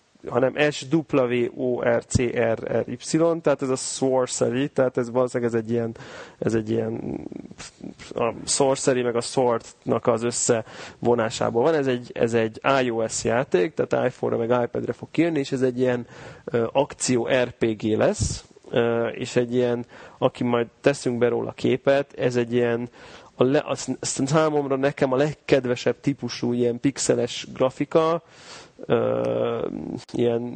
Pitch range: 120-140 Hz